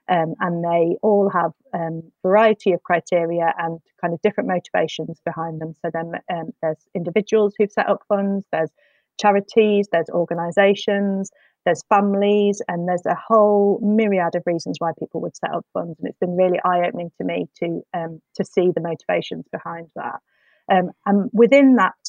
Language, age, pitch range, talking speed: English, 30-49, 175-205 Hz, 175 wpm